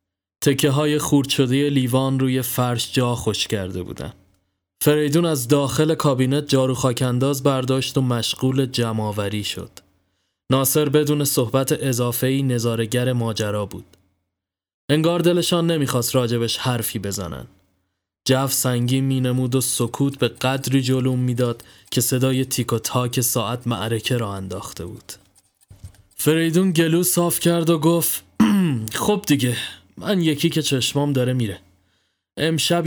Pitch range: 100-140 Hz